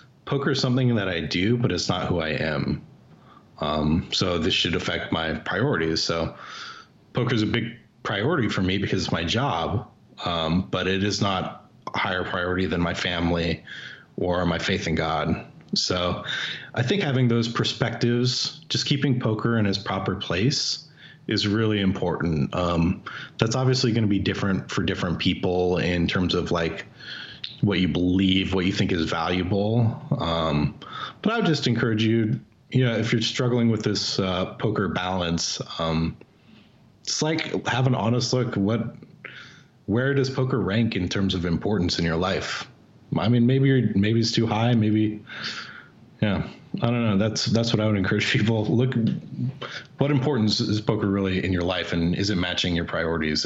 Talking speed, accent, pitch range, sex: 175 wpm, American, 90-120 Hz, male